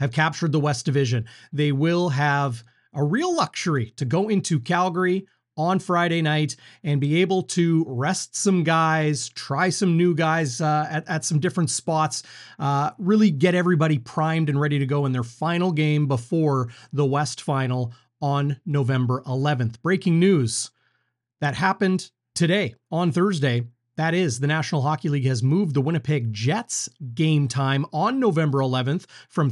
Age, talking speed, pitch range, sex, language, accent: 30-49, 160 wpm, 140-180 Hz, male, English, American